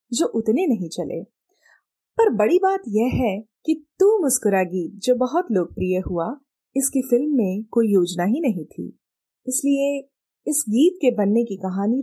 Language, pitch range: Hindi, 210-290 Hz